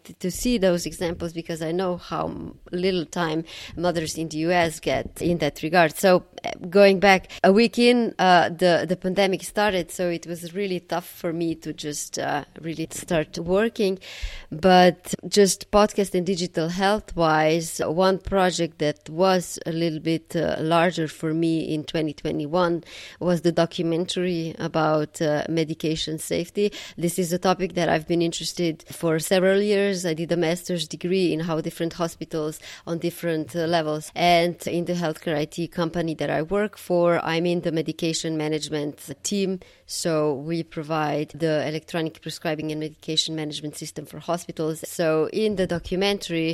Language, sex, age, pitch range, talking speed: English, female, 20-39, 160-180 Hz, 160 wpm